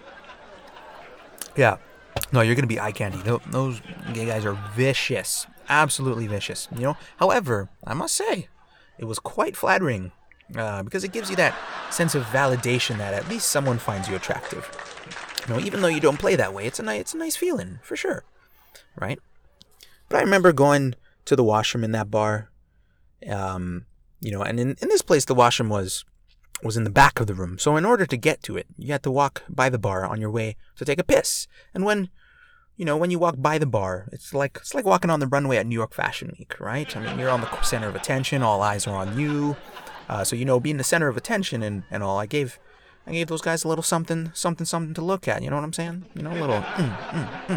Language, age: English, 30-49